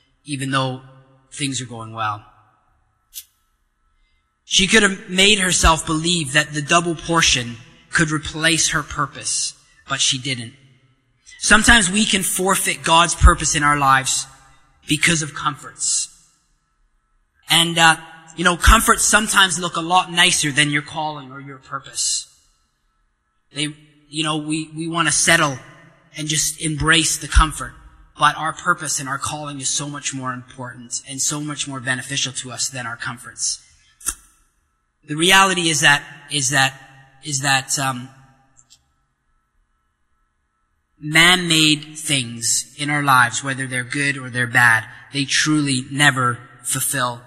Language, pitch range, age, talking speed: English, 125-165 Hz, 20-39, 140 wpm